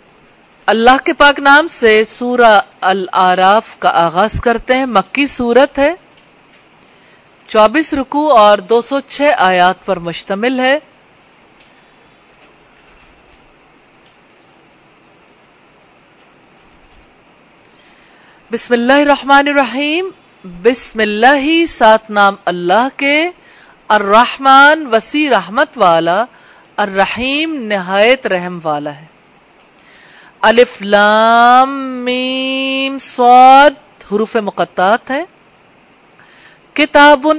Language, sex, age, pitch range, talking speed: English, female, 40-59, 205-280 Hz, 70 wpm